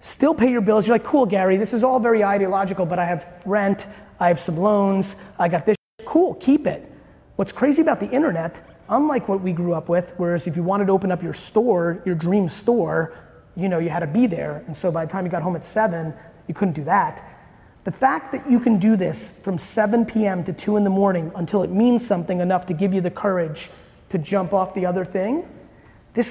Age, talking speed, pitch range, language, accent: 30-49, 235 wpm, 180-225 Hz, English, American